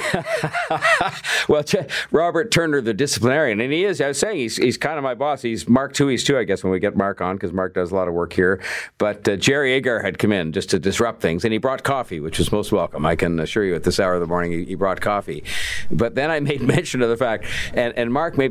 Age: 50-69